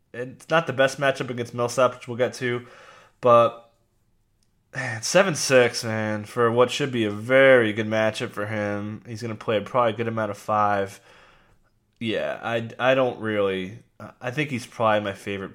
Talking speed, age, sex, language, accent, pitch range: 180 wpm, 20-39, male, English, American, 105-125 Hz